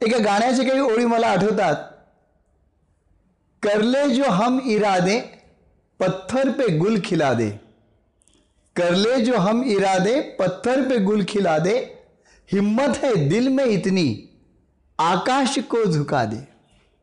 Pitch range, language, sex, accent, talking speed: 170-230 Hz, Marathi, male, native, 120 wpm